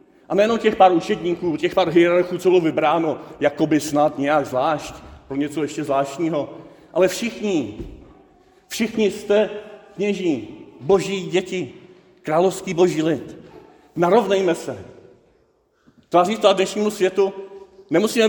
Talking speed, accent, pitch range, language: 120 wpm, native, 170-210 Hz, Czech